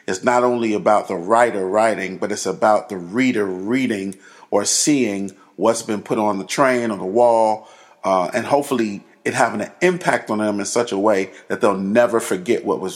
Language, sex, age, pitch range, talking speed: English, male, 40-59, 95-115 Hz, 200 wpm